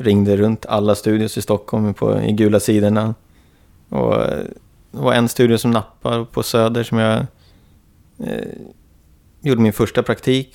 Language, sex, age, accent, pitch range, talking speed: Swedish, male, 30-49, native, 90-115 Hz, 150 wpm